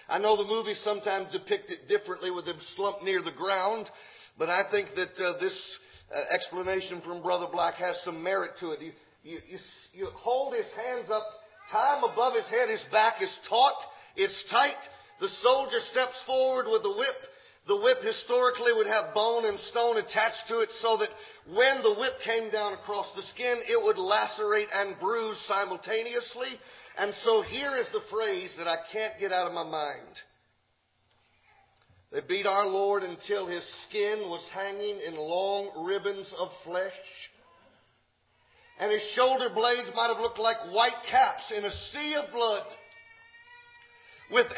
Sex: male